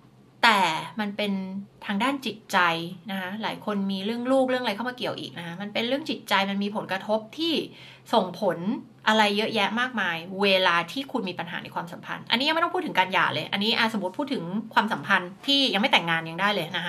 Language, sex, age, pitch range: Thai, female, 20-39, 190-250 Hz